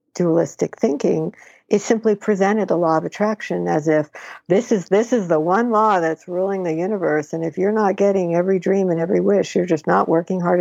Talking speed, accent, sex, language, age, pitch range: 210 wpm, American, female, English, 60-79, 165-195 Hz